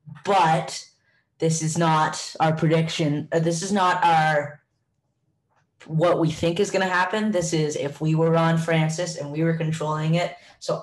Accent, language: American, English